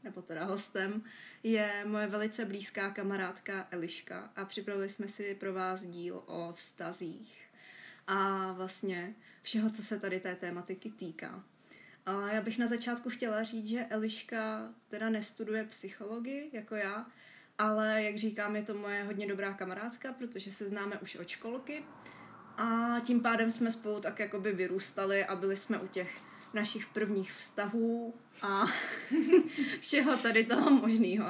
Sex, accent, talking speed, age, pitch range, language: female, native, 150 wpm, 20-39, 195-225 Hz, Czech